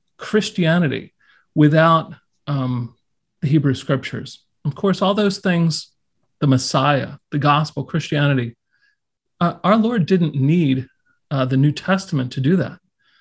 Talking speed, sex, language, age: 125 wpm, male, English, 40-59